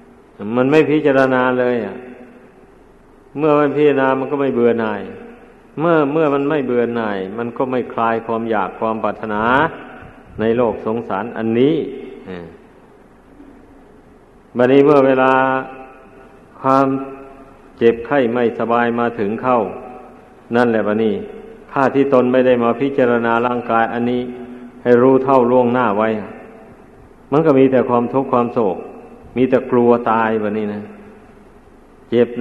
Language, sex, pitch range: Thai, male, 115-130 Hz